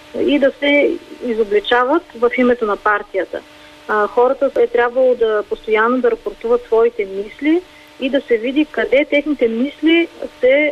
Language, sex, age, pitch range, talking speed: Bulgarian, female, 30-49, 220-285 Hz, 145 wpm